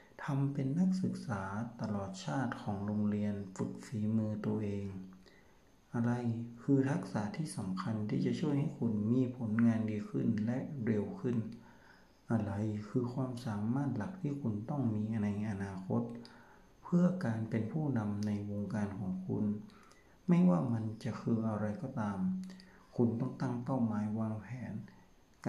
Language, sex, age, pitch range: Thai, male, 60-79, 105-130 Hz